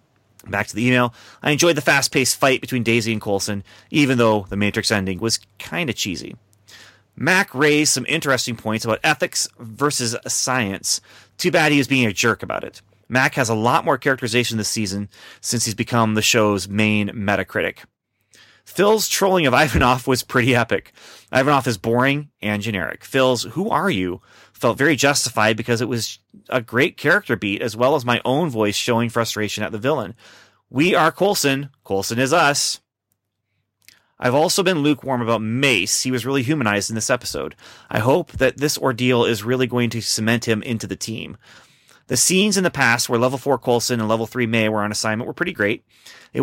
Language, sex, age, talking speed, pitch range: English, male, 30-49, 185 wpm, 105-135 Hz